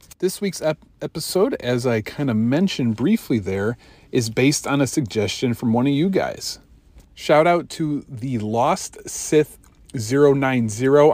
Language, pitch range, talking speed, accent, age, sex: English, 110-145 Hz, 150 wpm, American, 40-59, male